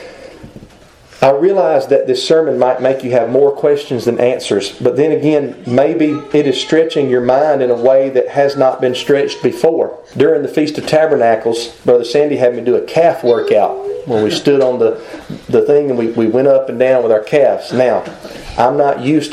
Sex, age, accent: male, 40-59, American